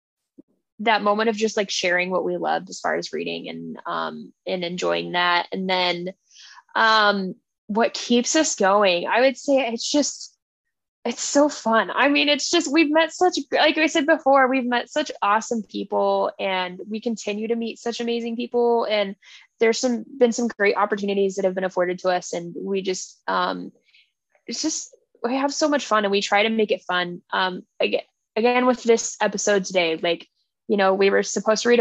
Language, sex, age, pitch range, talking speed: English, female, 10-29, 190-240 Hz, 195 wpm